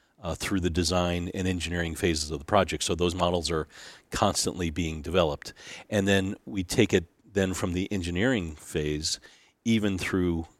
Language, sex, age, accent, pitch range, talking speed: English, male, 40-59, American, 85-95 Hz, 165 wpm